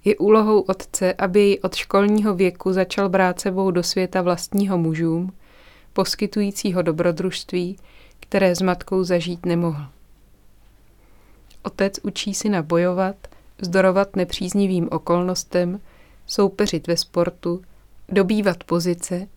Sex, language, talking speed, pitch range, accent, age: female, Czech, 105 wpm, 175-195 Hz, native, 30-49